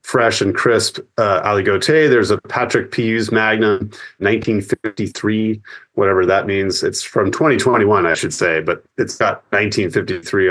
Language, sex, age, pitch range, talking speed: English, male, 30-49, 105-140 Hz, 135 wpm